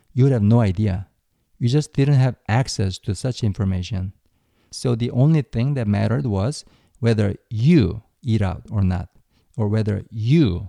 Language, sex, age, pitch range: Korean, male, 50-69, 100-130 Hz